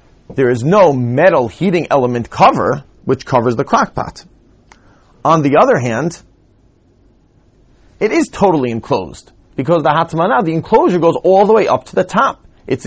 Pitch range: 125-175 Hz